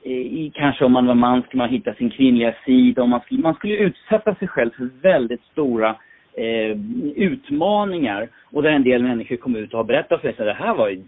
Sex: male